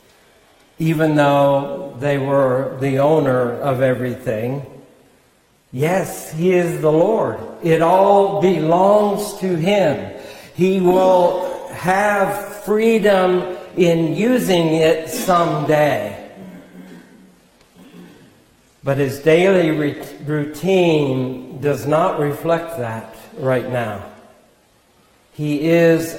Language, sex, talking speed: English, male, 85 wpm